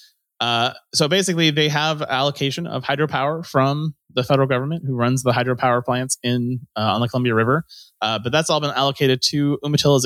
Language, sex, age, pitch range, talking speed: English, male, 30-49, 105-145 Hz, 185 wpm